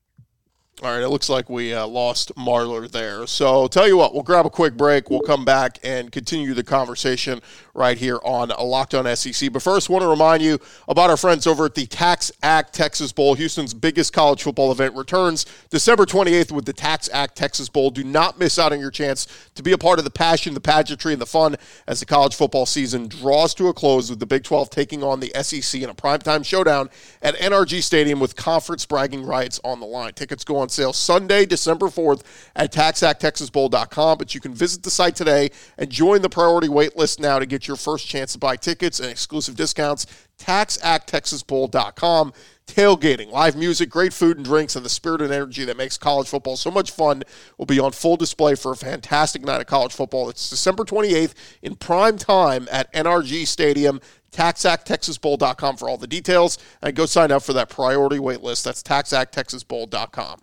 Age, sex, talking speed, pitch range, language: 40-59, male, 200 wpm, 135-165 Hz, English